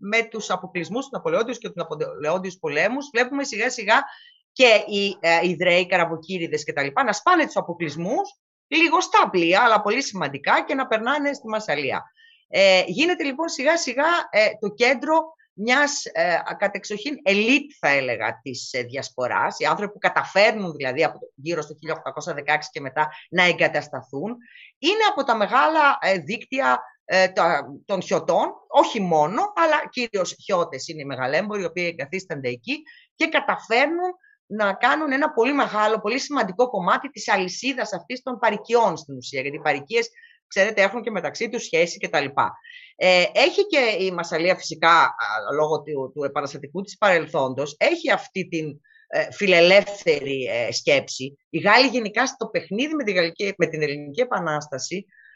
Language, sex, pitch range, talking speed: Greek, female, 170-280 Hz, 140 wpm